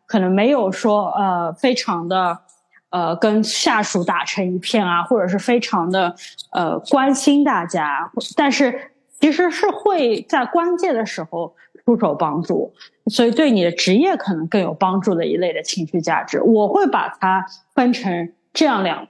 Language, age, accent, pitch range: Chinese, 20-39, native, 185-255 Hz